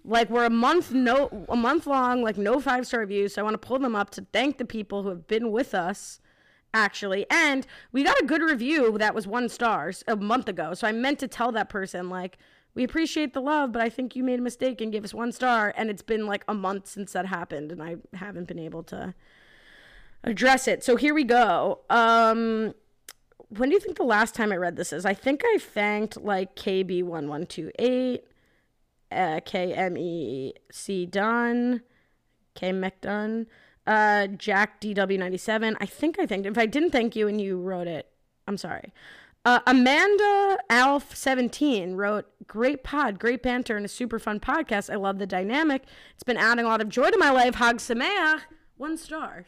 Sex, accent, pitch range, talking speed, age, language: female, American, 200-255 Hz, 200 wpm, 20-39, English